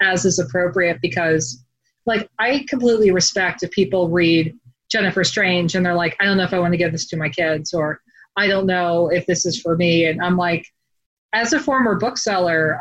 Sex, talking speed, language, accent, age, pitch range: female, 205 wpm, English, American, 30-49, 175-210 Hz